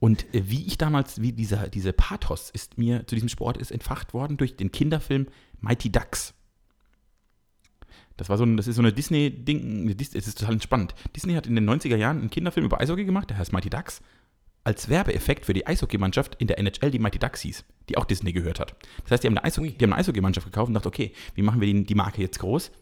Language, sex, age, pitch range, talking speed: German, male, 40-59, 100-135 Hz, 230 wpm